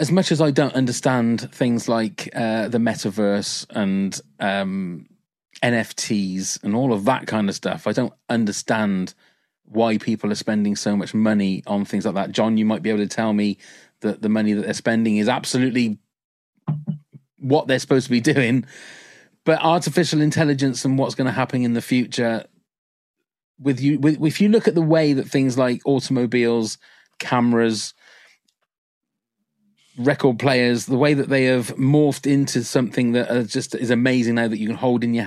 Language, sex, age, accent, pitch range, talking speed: English, male, 30-49, British, 110-135 Hz, 175 wpm